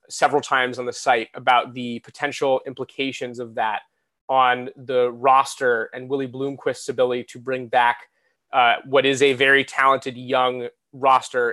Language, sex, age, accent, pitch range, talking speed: English, male, 20-39, American, 130-155 Hz, 150 wpm